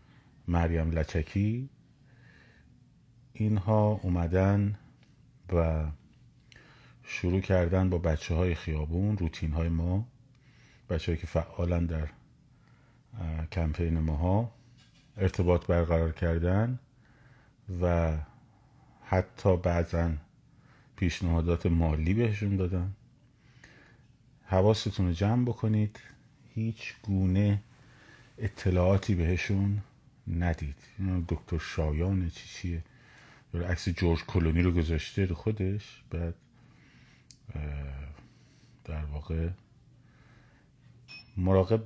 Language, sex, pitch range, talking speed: Persian, male, 85-115 Hz, 75 wpm